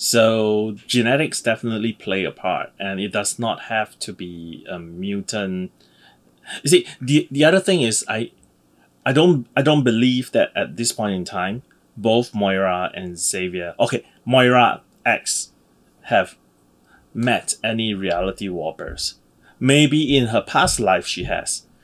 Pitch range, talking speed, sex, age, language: 95-125 Hz, 145 wpm, male, 30-49, English